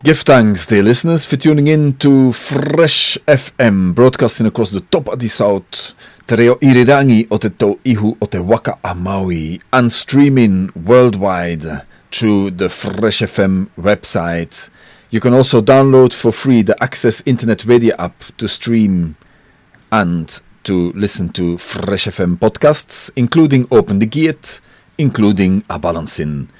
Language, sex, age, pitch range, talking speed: English, male, 40-59, 95-130 Hz, 115 wpm